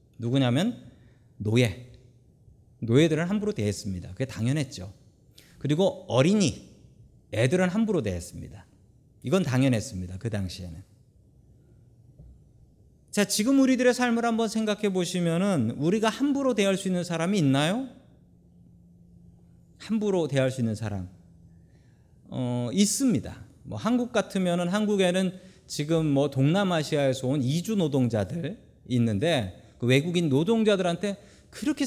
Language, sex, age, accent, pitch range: Korean, male, 40-59, native, 115-185 Hz